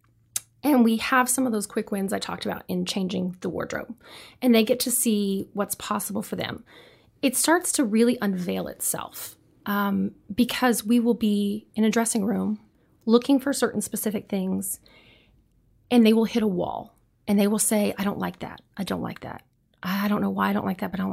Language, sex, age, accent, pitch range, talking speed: English, female, 30-49, American, 195-240 Hz, 205 wpm